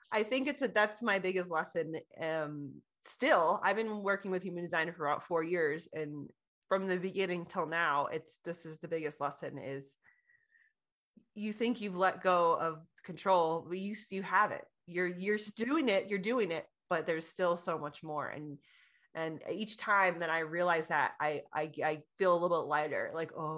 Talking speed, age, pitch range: 195 wpm, 30-49, 165-210 Hz